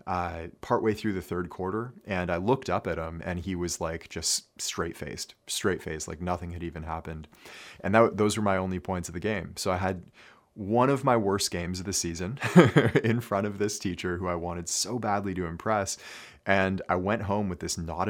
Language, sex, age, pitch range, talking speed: English, male, 30-49, 85-105 Hz, 210 wpm